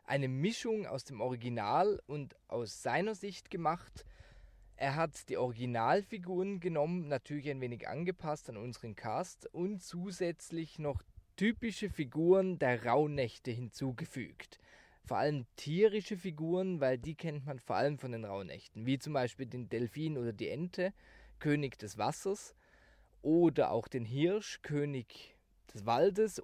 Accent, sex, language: German, male, German